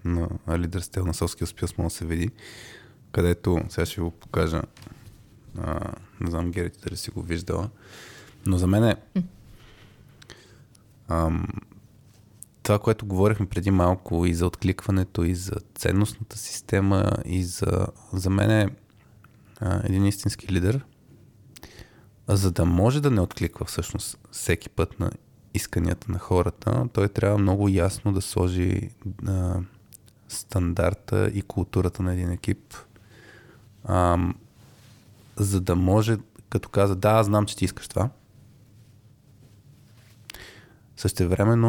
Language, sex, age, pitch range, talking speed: Bulgarian, male, 20-39, 95-110 Hz, 125 wpm